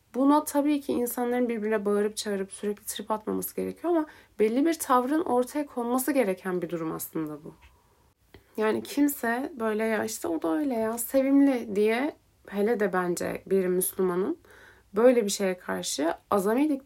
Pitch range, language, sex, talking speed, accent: 195-255 Hz, Turkish, female, 155 wpm, native